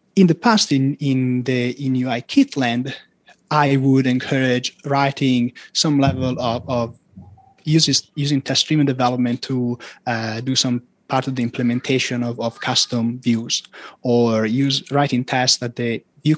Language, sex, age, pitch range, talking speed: English, male, 30-49, 120-145 Hz, 150 wpm